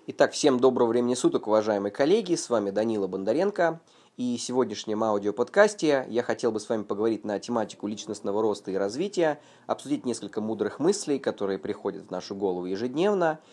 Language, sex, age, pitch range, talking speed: Russian, male, 20-39, 105-145 Hz, 165 wpm